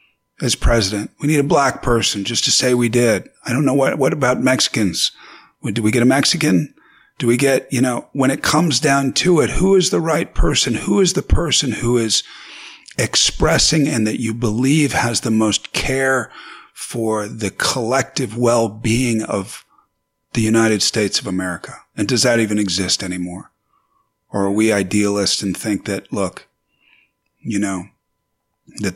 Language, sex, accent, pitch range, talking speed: English, male, American, 100-120 Hz, 170 wpm